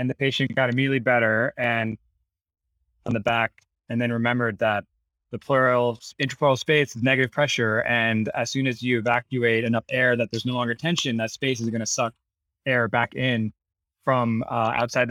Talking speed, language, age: 185 wpm, English, 20-39